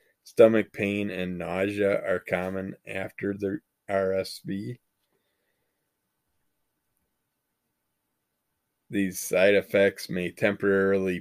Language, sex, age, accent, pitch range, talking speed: English, male, 20-39, American, 95-105 Hz, 75 wpm